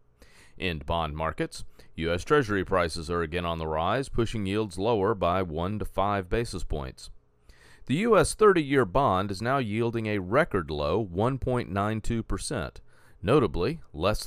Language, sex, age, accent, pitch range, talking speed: English, male, 40-59, American, 80-115 Hz, 140 wpm